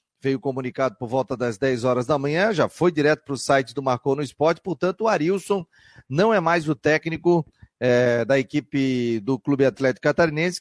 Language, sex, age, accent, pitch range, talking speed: Portuguese, male, 40-59, Brazilian, 130-165 Hz, 190 wpm